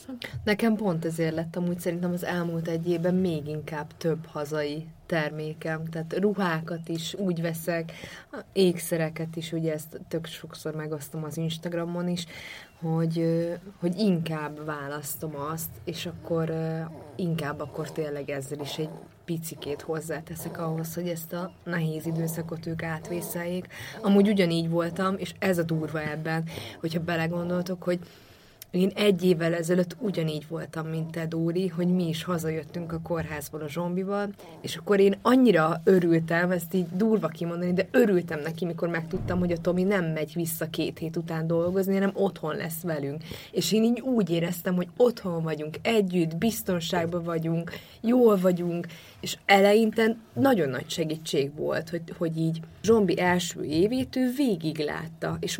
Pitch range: 160-185 Hz